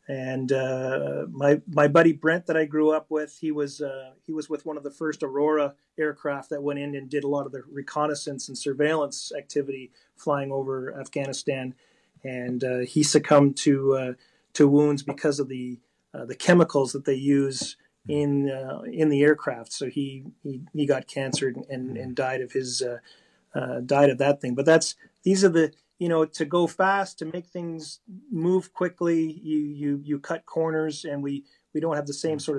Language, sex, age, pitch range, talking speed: English, male, 40-59, 135-155 Hz, 195 wpm